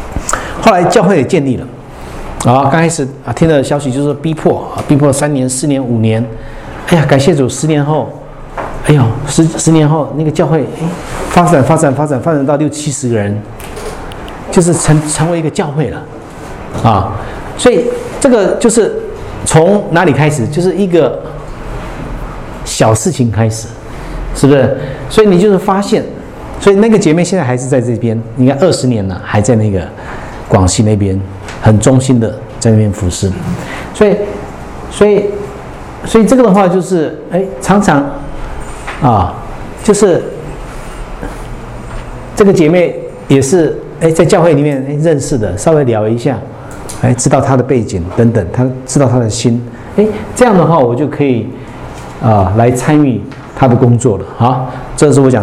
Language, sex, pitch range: English, male, 120-165 Hz